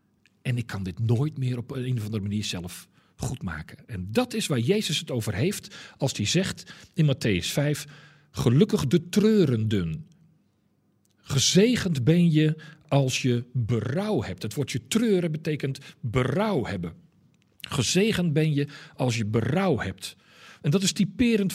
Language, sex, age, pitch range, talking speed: Dutch, male, 50-69, 125-185 Hz, 155 wpm